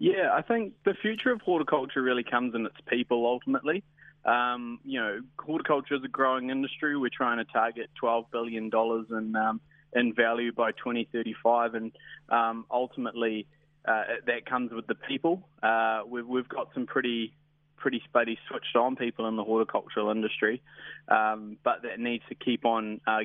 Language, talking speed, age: English, 165 wpm, 20-39